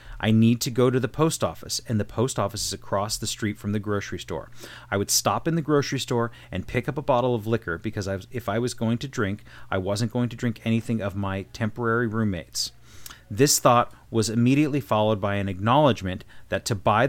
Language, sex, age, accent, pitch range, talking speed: English, male, 30-49, American, 105-130 Hz, 220 wpm